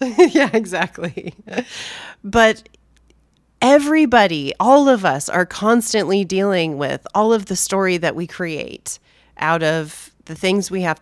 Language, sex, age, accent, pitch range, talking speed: English, female, 30-49, American, 165-220 Hz, 130 wpm